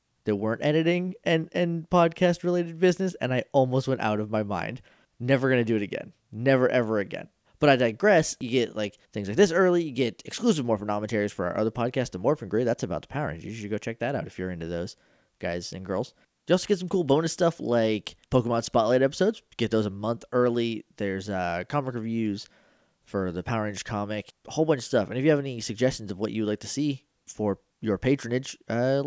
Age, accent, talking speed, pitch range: 20-39, American, 225 wpm, 105-155 Hz